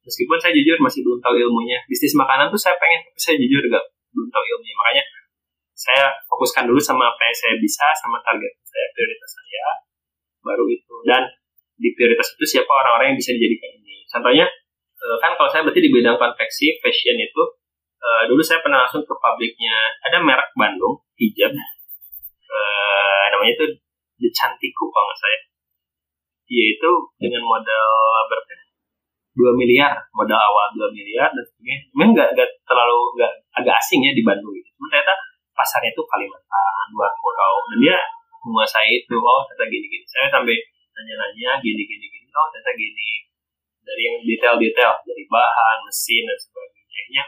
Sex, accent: male, native